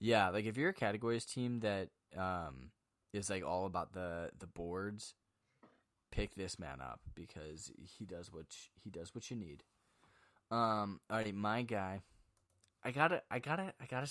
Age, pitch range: 10-29, 95-125 Hz